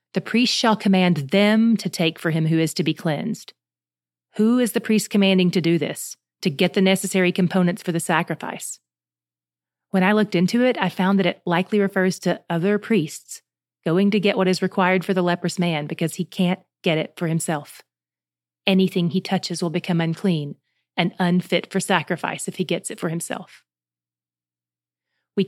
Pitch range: 165-210 Hz